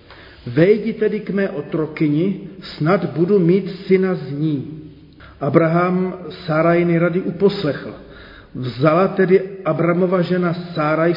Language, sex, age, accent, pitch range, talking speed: Czech, male, 40-59, native, 150-180 Hz, 105 wpm